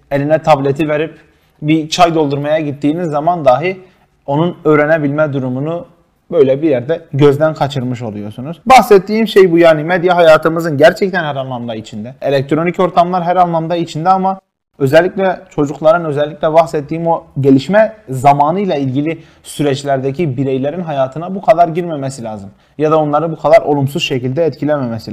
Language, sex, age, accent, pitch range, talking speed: Turkish, male, 30-49, native, 135-175 Hz, 135 wpm